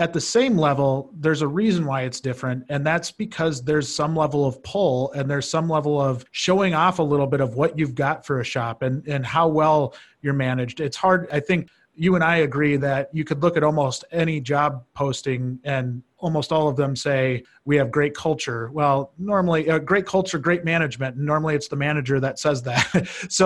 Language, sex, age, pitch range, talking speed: English, male, 30-49, 135-160 Hz, 210 wpm